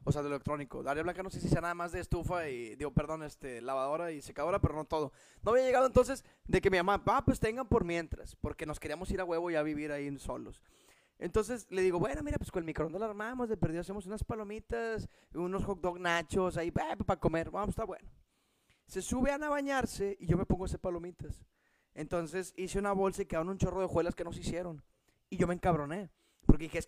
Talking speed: 245 wpm